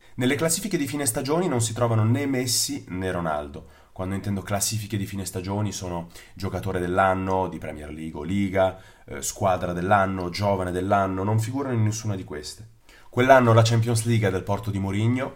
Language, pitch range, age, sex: Italian, 90-115 Hz, 30-49, male